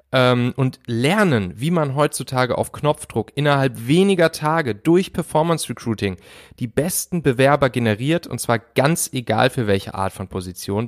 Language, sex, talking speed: German, male, 145 wpm